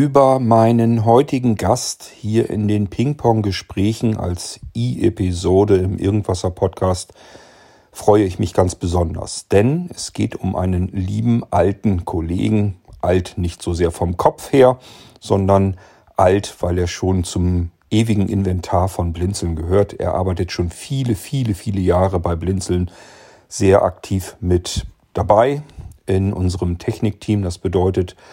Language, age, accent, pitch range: German, 40-59, German, 90-110 Hz